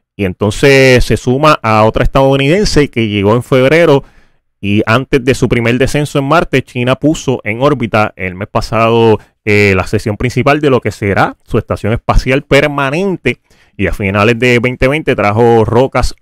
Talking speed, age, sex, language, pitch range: 165 wpm, 30-49, male, Spanish, 105-130 Hz